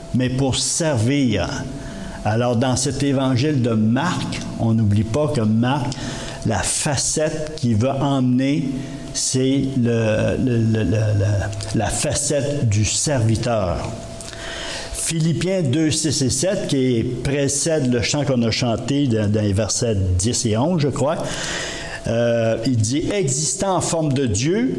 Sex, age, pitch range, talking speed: male, 60-79, 115-150 Hz, 130 wpm